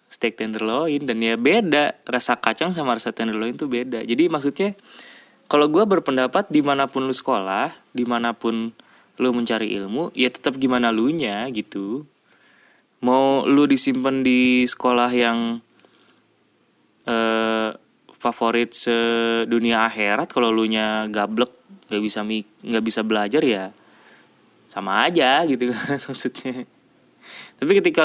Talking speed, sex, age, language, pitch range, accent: 120 wpm, male, 20-39, Indonesian, 110-130 Hz, native